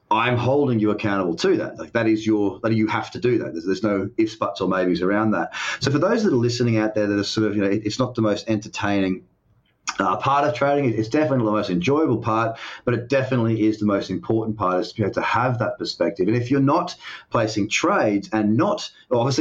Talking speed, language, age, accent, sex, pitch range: 250 wpm, English, 30-49, Australian, male, 105-125 Hz